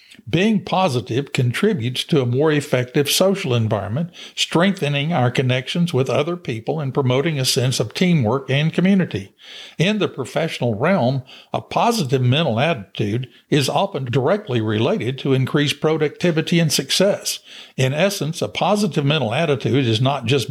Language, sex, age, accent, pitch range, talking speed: English, male, 60-79, American, 125-165 Hz, 145 wpm